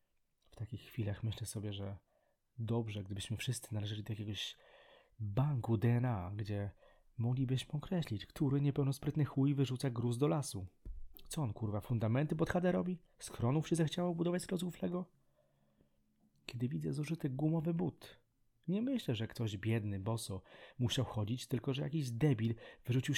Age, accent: 30-49, native